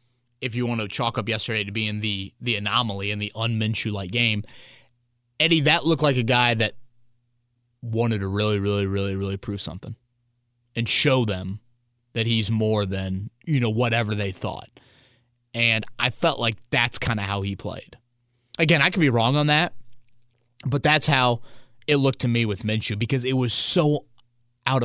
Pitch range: 110-125 Hz